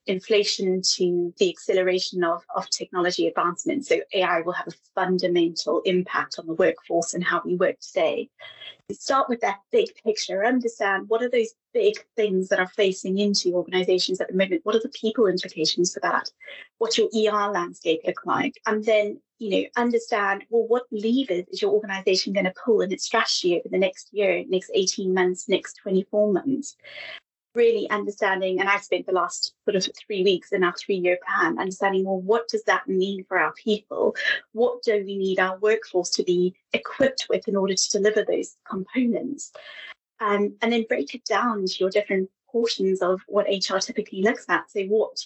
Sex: female